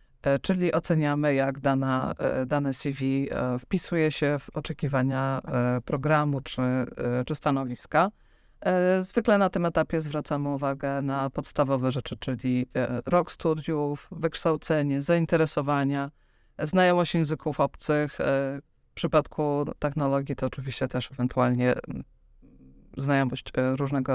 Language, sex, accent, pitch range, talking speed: Polish, female, native, 135-160 Hz, 95 wpm